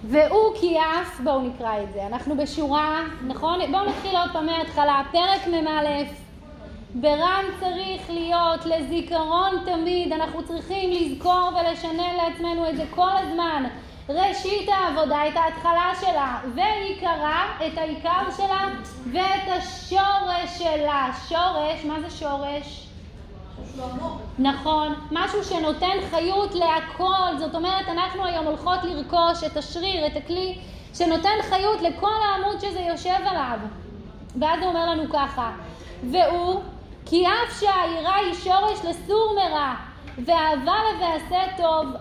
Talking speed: 120 wpm